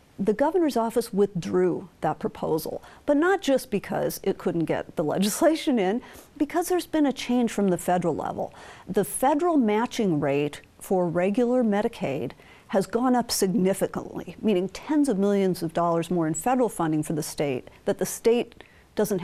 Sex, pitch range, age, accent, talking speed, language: female, 180-245 Hz, 50-69, American, 165 wpm, English